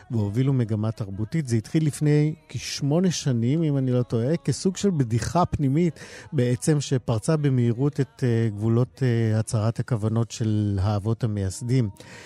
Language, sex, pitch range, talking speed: Hebrew, male, 115-150 Hz, 125 wpm